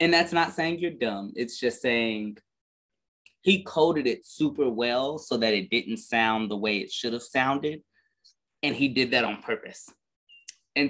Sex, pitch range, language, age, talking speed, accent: male, 110-155 Hz, English, 20-39, 175 wpm, American